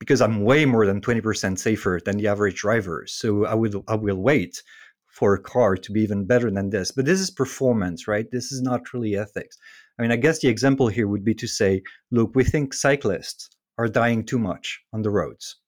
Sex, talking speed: male, 220 wpm